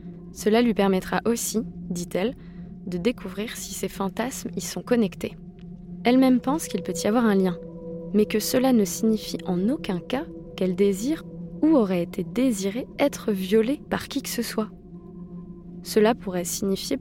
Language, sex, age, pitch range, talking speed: French, female, 20-39, 175-225 Hz, 160 wpm